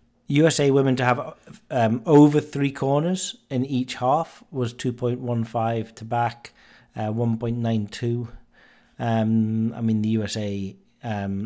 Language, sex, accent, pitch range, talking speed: English, male, British, 110-135 Hz, 115 wpm